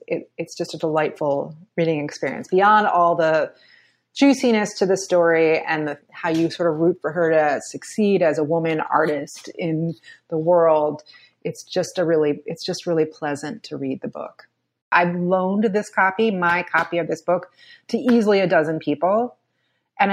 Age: 30-49